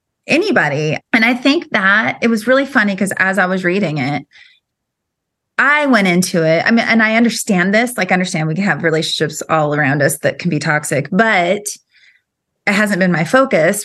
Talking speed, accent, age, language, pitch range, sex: 190 wpm, American, 30-49, English, 165-220 Hz, female